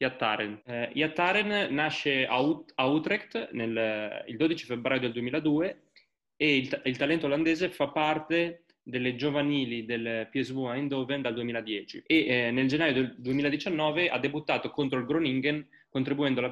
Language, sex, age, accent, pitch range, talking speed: Italian, male, 20-39, native, 120-150 Hz, 130 wpm